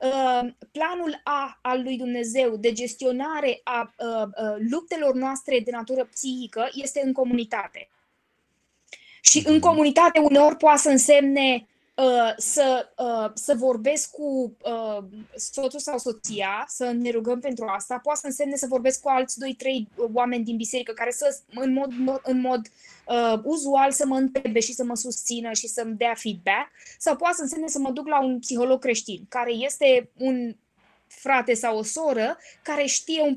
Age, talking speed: 20-39, 160 wpm